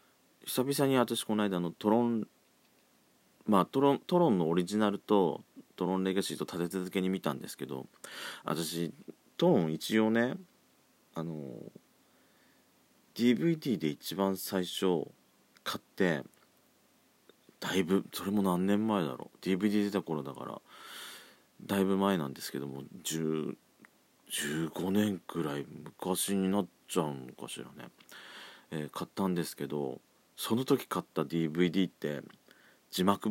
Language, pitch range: Japanese, 80-105 Hz